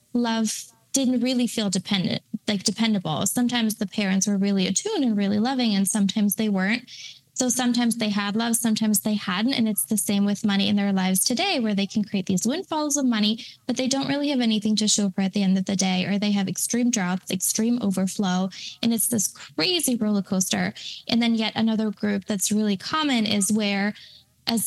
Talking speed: 205 wpm